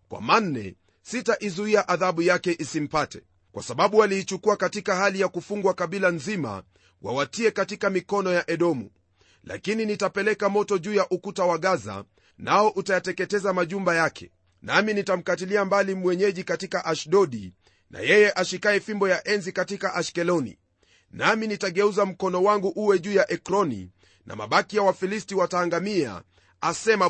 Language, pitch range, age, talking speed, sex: Swahili, 170-205 Hz, 40-59, 135 wpm, male